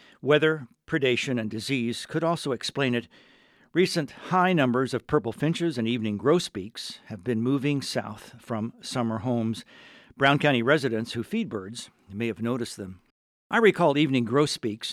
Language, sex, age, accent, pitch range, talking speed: English, male, 60-79, American, 115-150 Hz, 155 wpm